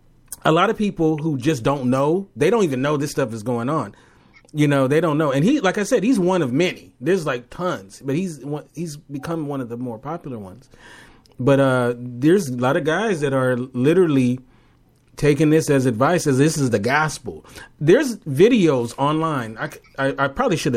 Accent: American